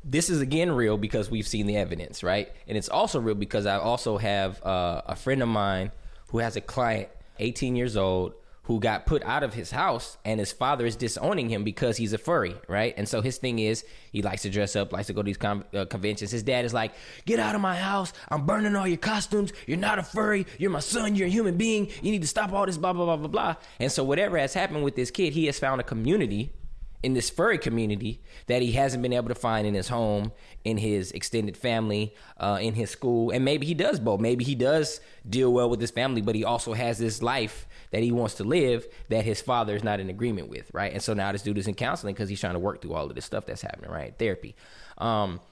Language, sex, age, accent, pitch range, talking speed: English, male, 20-39, American, 105-145 Hz, 255 wpm